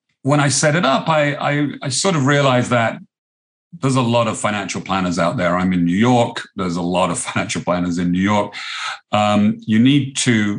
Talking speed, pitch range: 210 wpm, 95-125 Hz